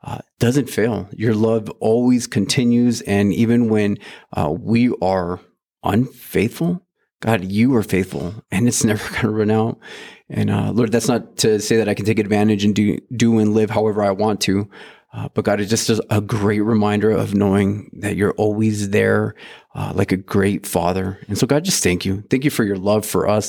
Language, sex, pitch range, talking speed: English, male, 100-115 Hz, 200 wpm